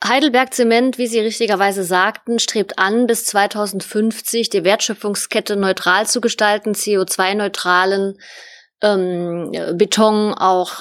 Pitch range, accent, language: 200-265 Hz, German, German